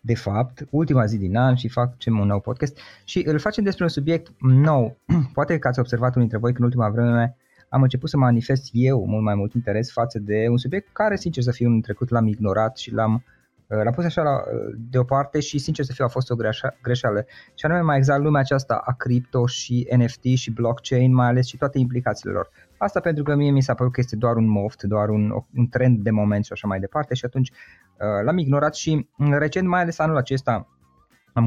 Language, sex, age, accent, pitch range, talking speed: Romanian, male, 20-39, native, 115-150 Hz, 220 wpm